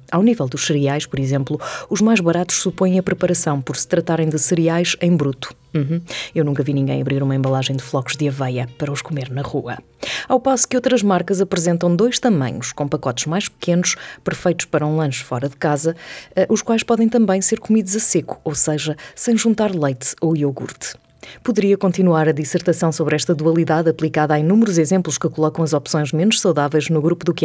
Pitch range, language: 145-185 Hz, Portuguese